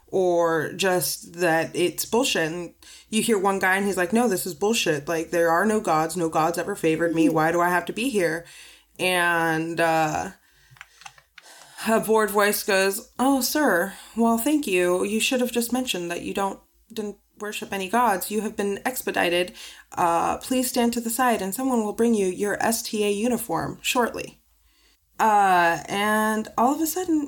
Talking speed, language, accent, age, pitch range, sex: 180 wpm, English, American, 20-39, 180-245 Hz, female